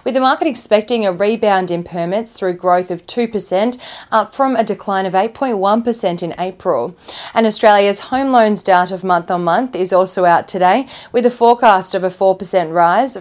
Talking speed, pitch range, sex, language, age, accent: 175 wpm, 185-225 Hz, female, English, 20-39, Australian